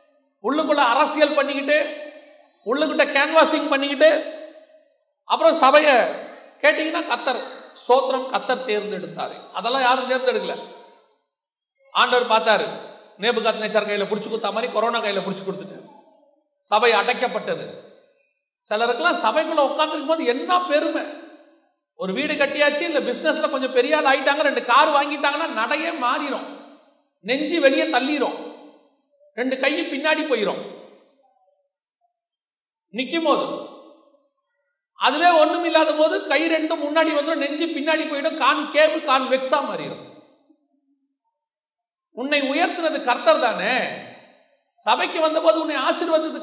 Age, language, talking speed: 40-59, Tamil, 105 wpm